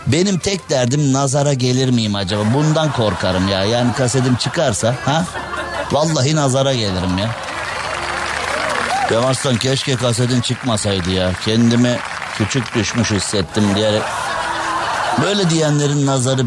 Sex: male